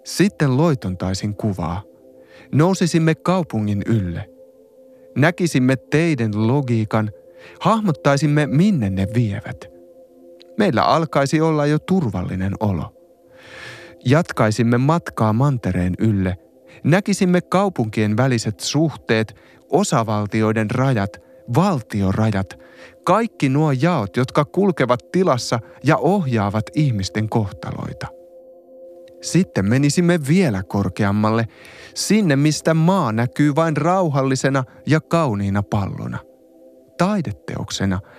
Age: 30-49